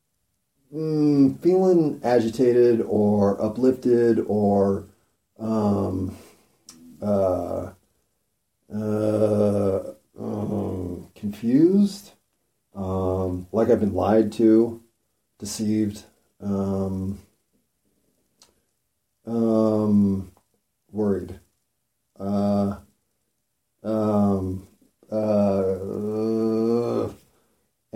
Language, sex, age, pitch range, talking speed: English, male, 40-59, 100-120 Hz, 50 wpm